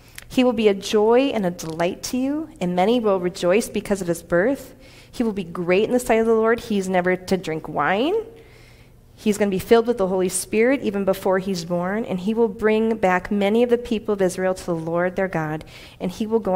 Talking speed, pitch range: 240 wpm, 190-260 Hz